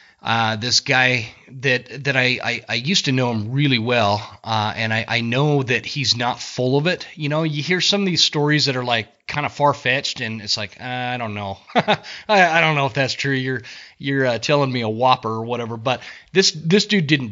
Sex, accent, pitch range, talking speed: male, American, 115-150 Hz, 230 wpm